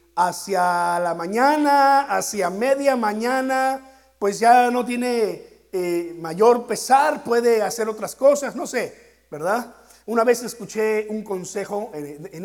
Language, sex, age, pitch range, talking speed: Spanish, male, 50-69, 165-245 Hz, 130 wpm